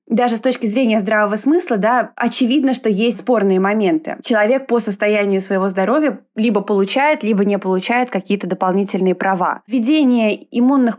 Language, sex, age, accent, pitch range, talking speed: Russian, female, 20-39, native, 195-235 Hz, 145 wpm